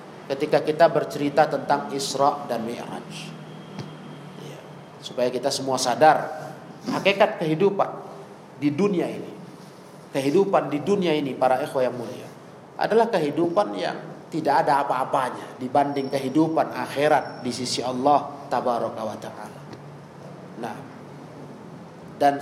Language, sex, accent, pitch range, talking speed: Indonesian, male, native, 145-205 Hz, 105 wpm